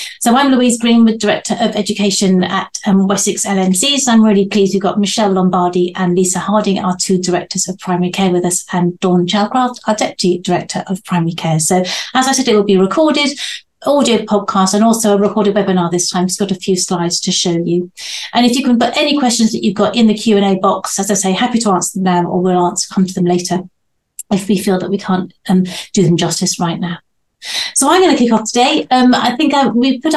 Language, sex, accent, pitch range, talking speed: English, female, British, 185-240 Hz, 235 wpm